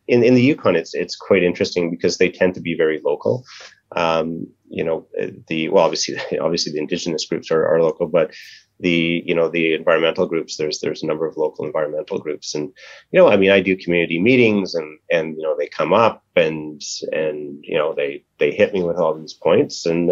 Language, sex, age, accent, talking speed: English, male, 30-49, American, 215 wpm